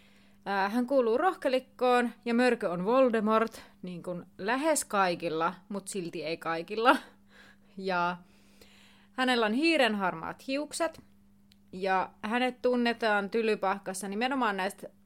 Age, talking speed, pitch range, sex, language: 30-49, 105 wpm, 175-225 Hz, female, Finnish